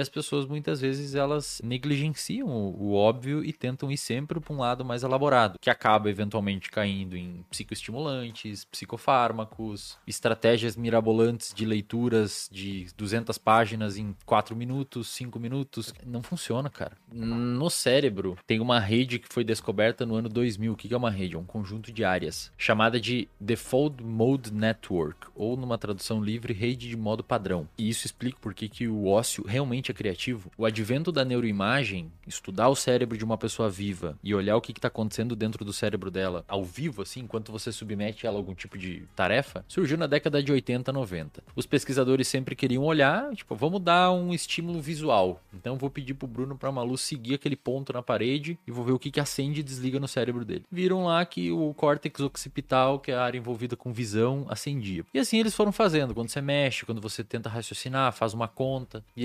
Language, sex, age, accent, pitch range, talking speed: Portuguese, male, 20-39, Brazilian, 110-135 Hz, 190 wpm